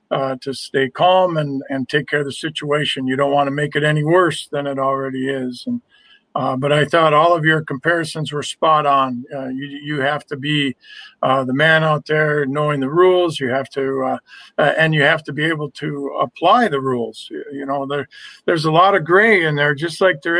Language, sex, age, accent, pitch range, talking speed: English, male, 50-69, American, 140-170 Hz, 230 wpm